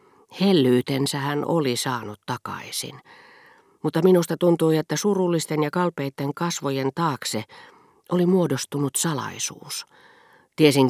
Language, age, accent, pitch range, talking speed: Finnish, 40-59, native, 125-155 Hz, 100 wpm